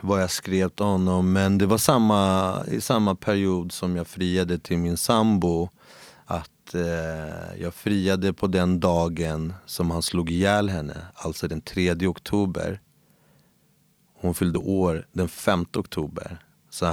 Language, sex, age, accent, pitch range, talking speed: Swedish, male, 30-49, native, 85-105 Hz, 140 wpm